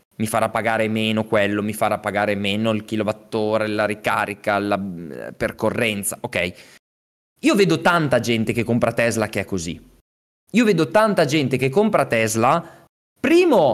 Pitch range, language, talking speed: 110-165 Hz, Italian, 150 wpm